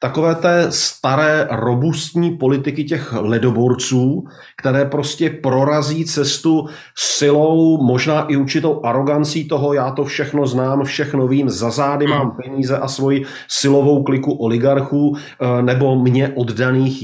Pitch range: 130-155 Hz